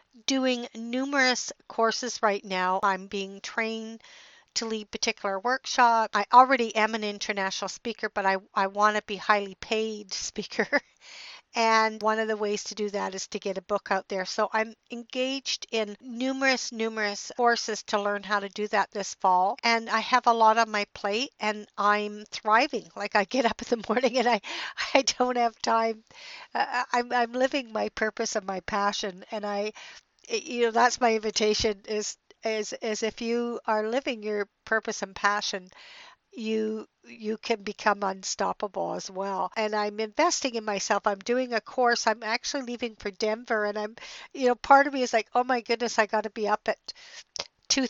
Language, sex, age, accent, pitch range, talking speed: English, female, 50-69, American, 210-240 Hz, 185 wpm